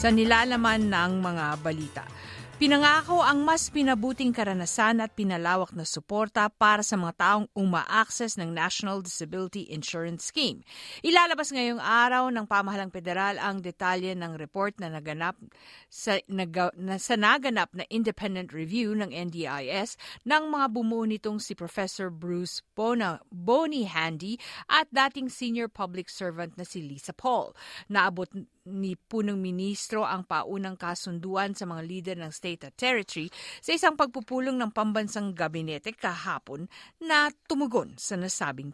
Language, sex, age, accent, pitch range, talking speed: Filipino, female, 50-69, native, 180-235 Hz, 135 wpm